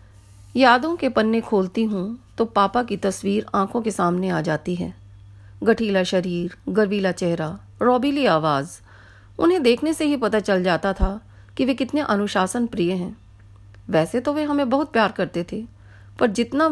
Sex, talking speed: female, 160 wpm